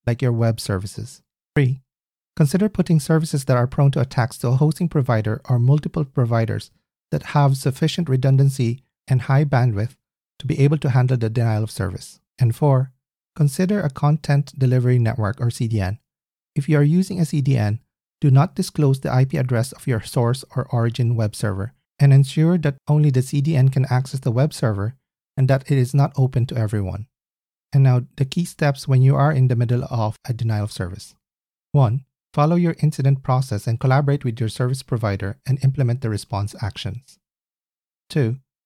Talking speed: 180 wpm